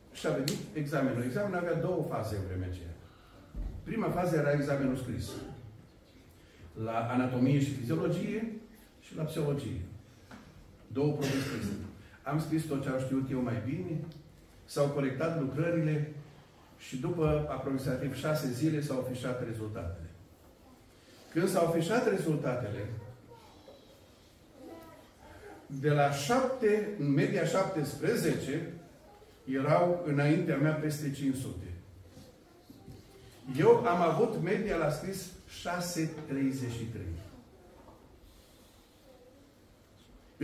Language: Romanian